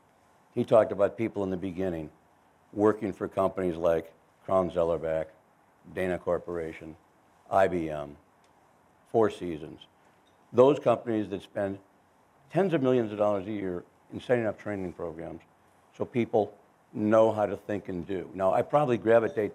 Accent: American